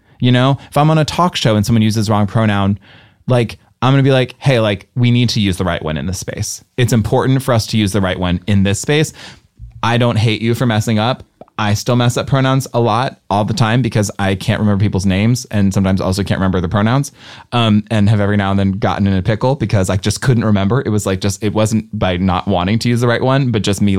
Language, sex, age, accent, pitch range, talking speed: English, male, 20-39, American, 100-125 Hz, 270 wpm